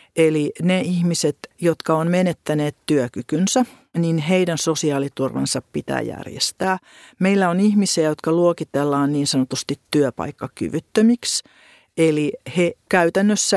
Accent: native